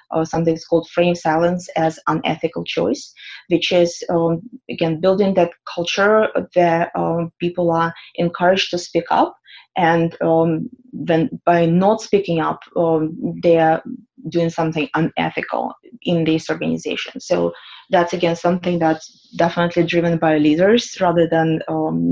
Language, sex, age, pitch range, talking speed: English, female, 20-39, 165-180 Hz, 140 wpm